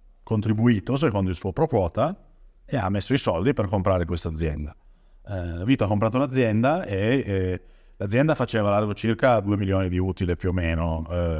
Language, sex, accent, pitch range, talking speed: Italian, male, native, 90-110 Hz, 185 wpm